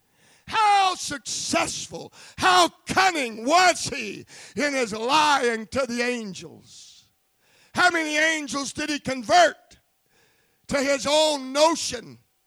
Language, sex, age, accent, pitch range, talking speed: English, male, 50-69, American, 170-255 Hz, 100 wpm